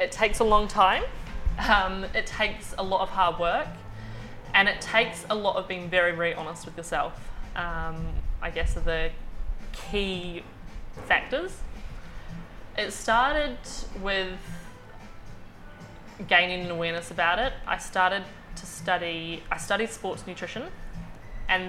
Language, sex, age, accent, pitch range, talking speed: English, female, 20-39, Australian, 170-195 Hz, 135 wpm